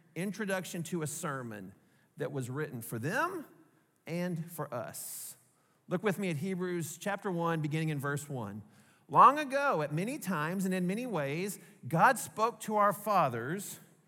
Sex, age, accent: male, 40-59, American